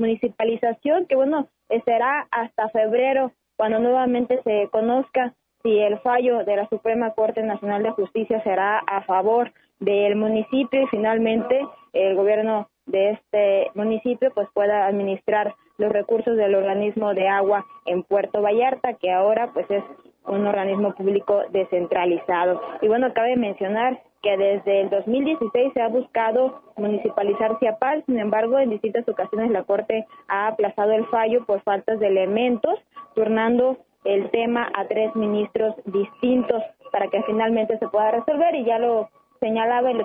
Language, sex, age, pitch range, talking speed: Spanish, female, 20-39, 205-245 Hz, 150 wpm